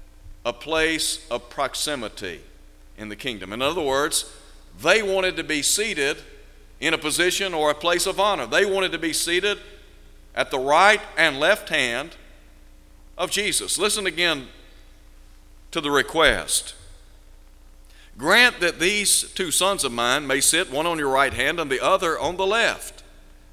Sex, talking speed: male, 155 wpm